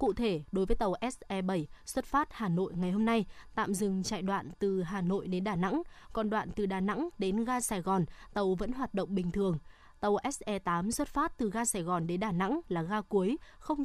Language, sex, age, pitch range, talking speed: Vietnamese, female, 20-39, 180-230 Hz, 230 wpm